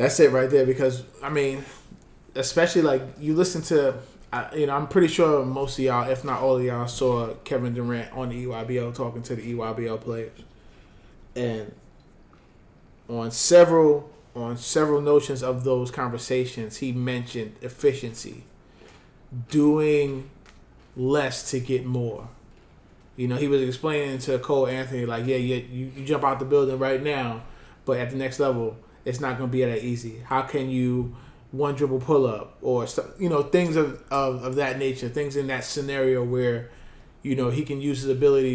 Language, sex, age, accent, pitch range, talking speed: English, male, 20-39, American, 120-140 Hz, 175 wpm